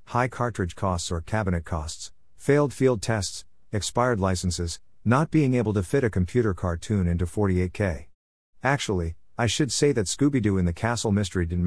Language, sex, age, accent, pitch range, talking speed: English, male, 50-69, American, 85-110 Hz, 165 wpm